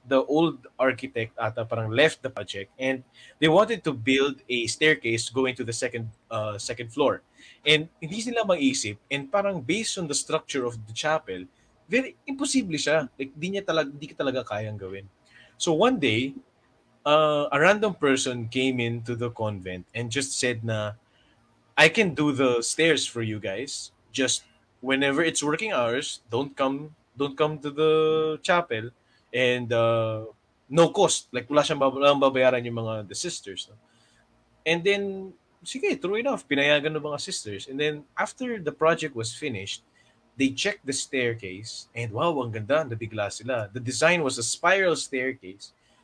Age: 20-39